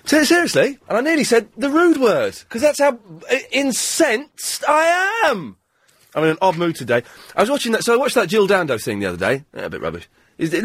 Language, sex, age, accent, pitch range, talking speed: English, male, 30-49, British, 140-230 Hz, 235 wpm